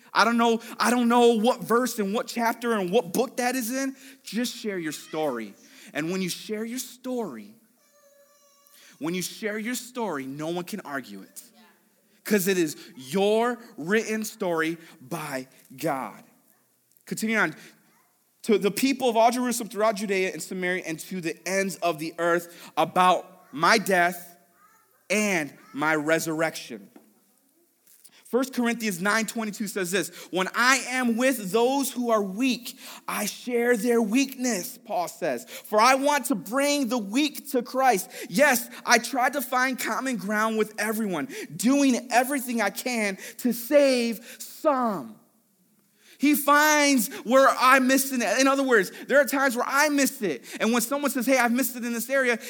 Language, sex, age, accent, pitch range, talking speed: English, male, 30-49, American, 195-255 Hz, 160 wpm